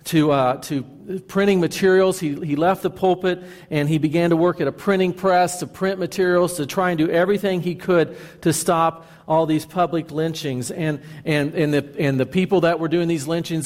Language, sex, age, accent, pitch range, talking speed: English, male, 50-69, American, 145-180 Hz, 205 wpm